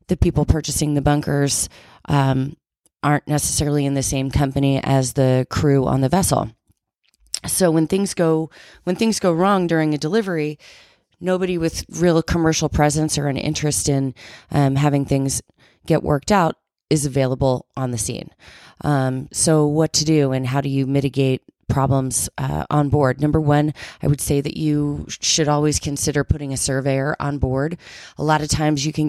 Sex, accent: female, American